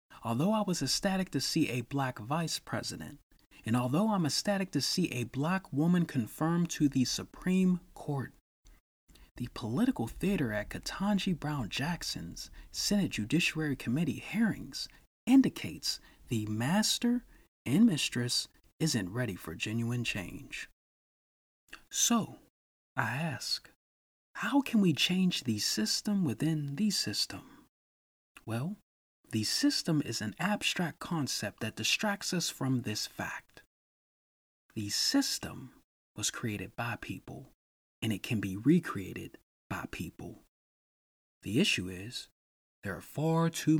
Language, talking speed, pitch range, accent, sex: English, 125 wpm, 115-175 Hz, American, male